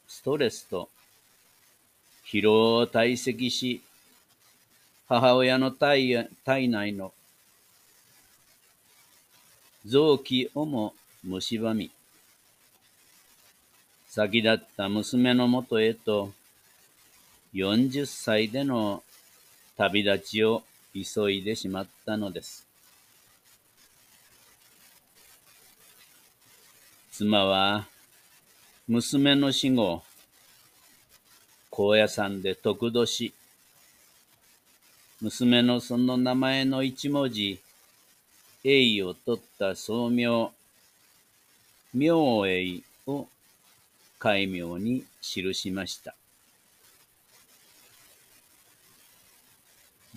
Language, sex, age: Japanese, male, 50-69